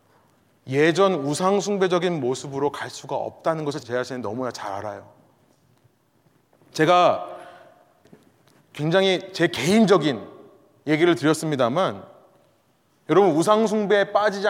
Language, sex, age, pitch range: Korean, male, 30-49, 135-200 Hz